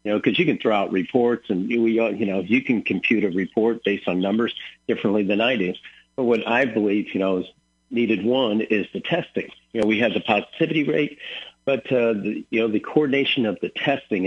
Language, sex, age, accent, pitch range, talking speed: English, male, 50-69, American, 100-120 Hz, 215 wpm